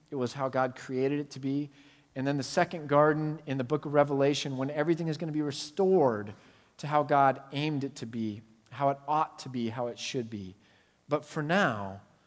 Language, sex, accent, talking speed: English, male, American, 215 wpm